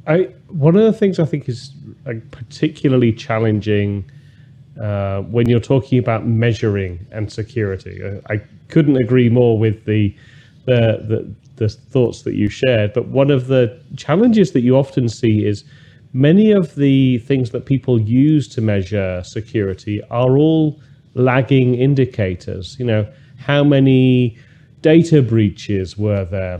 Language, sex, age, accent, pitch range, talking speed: English, male, 30-49, British, 110-135 Hz, 145 wpm